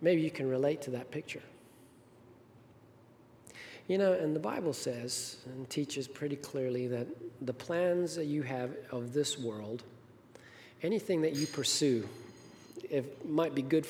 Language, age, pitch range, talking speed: English, 40-59, 120-140 Hz, 145 wpm